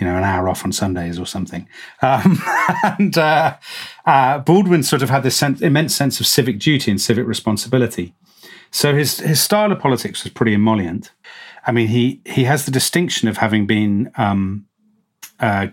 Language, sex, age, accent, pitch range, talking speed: English, male, 40-59, British, 110-145 Hz, 185 wpm